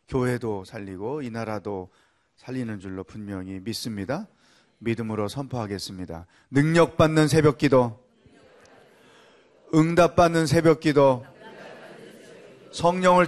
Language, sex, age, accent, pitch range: Korean, male, 30-49, native, 110-155 Hz